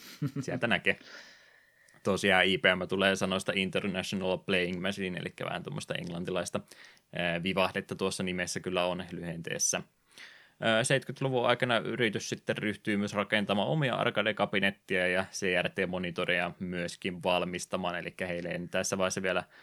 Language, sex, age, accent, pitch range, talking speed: Finnish, male, 20-39, native, 90-100 Hz, 120 wpm